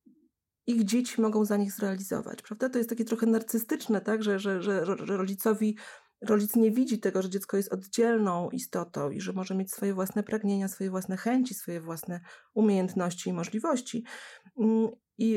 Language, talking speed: Polish, 165 wpm